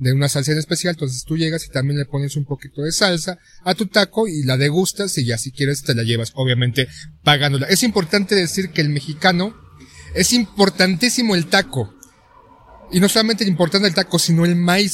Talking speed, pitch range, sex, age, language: 205 wpm, 150-195 Hz, male, 40-59, Spanish